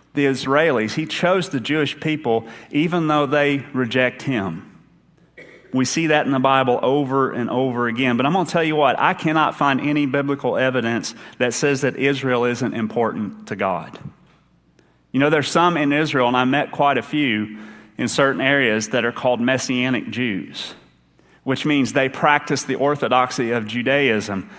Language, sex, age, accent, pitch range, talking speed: English, male, 30-49, American, 120-145 Hz, 175 wpm